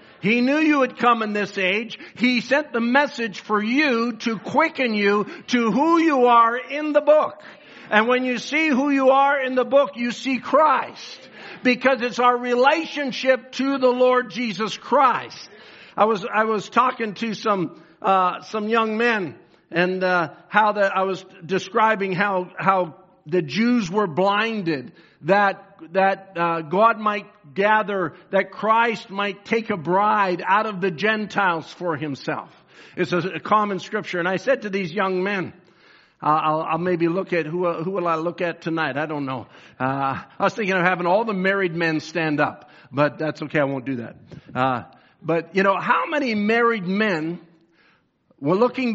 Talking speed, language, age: 180 wpm, English, 50-69